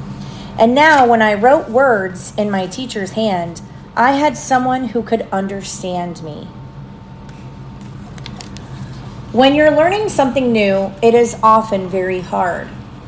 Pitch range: 180-250 Hz